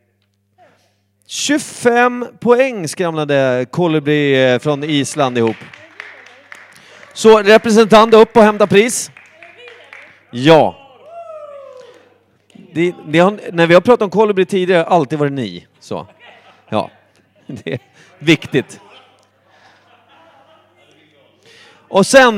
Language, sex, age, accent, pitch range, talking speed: Swedish, male, 30-49, native, 140-225 Hz, 95 wpm